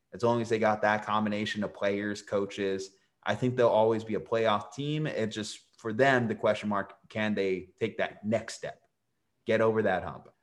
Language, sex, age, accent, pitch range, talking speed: English, male, 30-49, American, 100-120 Hz, 205 wpm